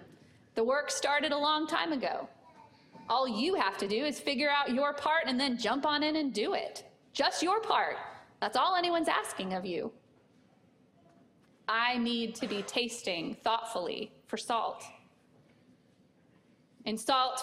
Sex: female